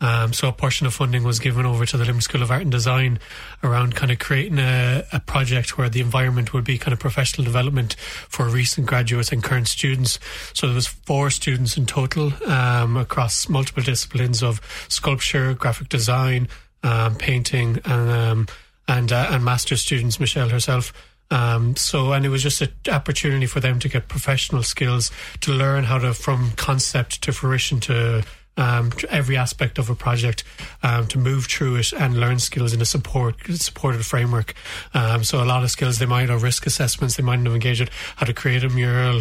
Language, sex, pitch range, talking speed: English, male, 120-135 Hz, 200 wpm